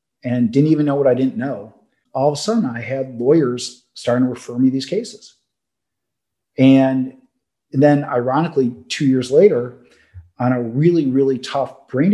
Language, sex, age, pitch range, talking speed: English, male, 40-59, 125-145 Hz, 165 wpm